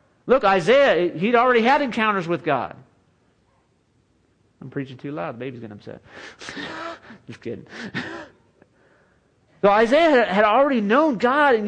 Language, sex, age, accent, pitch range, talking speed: English, male, 40-59, American, 135-215 Hz, 130 wpm